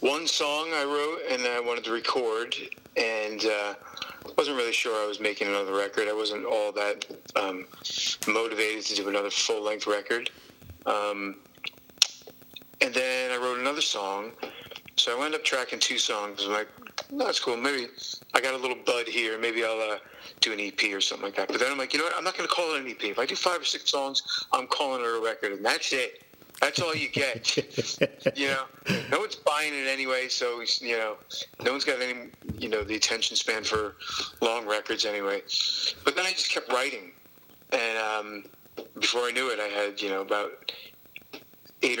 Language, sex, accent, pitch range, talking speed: English, male, American, 105-130 Hz, 205 wpm